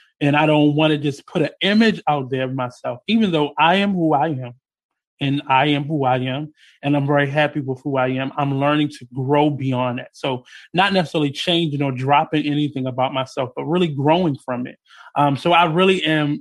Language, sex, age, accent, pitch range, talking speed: English, male, 20-39, American, 135-155 Hz, 215 wpm